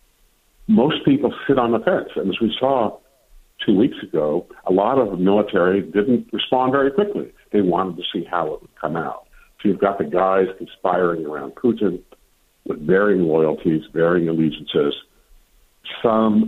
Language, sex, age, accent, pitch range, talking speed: English, male, 60-79, American, 80-100 Hz, 165 wpm